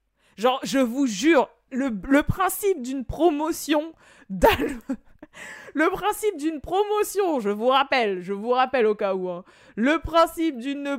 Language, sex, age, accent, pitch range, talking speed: French, female, 20-39, French, 200-270 Hz, 145 wpm